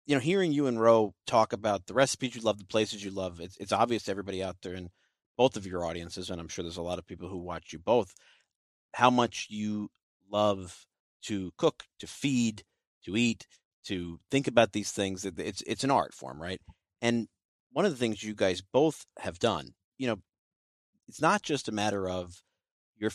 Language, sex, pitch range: English, male, 95-115 Hz